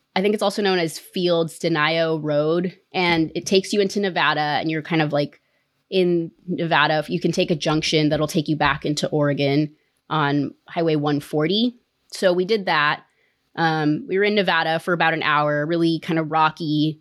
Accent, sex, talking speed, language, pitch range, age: American, female, 185 wpm, English, 160-200 Hz, 20-39